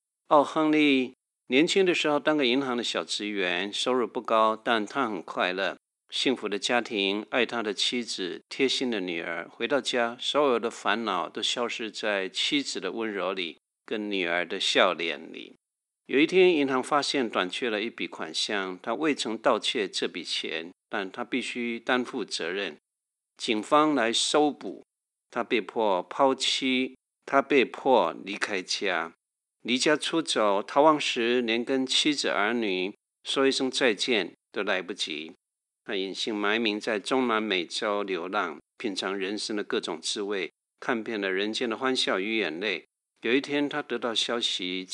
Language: Chinese